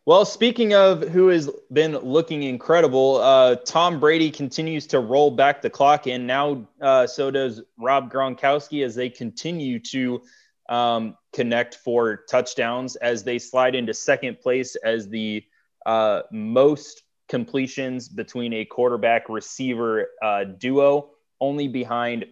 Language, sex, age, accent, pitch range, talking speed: English, male, 20-39, American, 115-145 Hz, 135 wpm